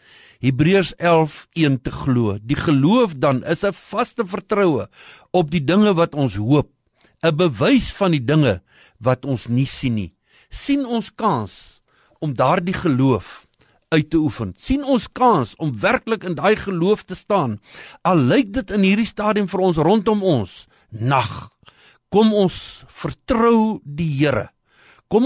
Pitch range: 130-210 Hz